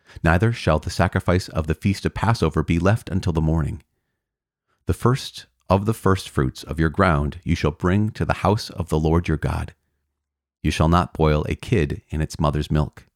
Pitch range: 75-95 Hz